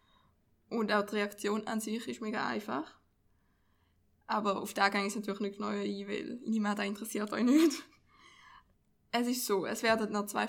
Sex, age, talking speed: female, 20-39, 175 wpm